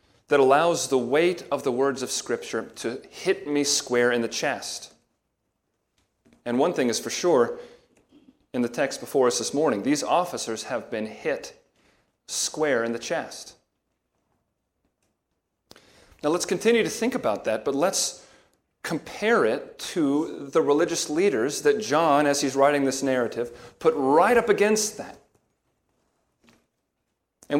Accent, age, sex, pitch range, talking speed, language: American, 40-59, male, 125-180 Hz, 145 wpm, English